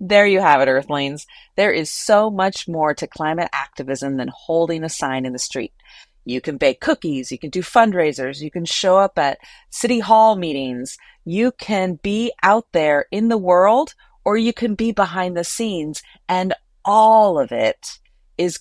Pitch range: 150-205 Hz